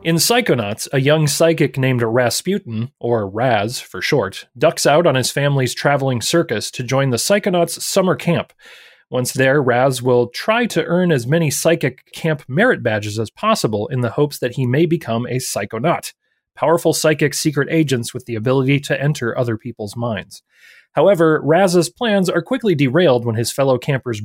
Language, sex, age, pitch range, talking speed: English, male, 30-49, 125-165 Hz, 175 wpm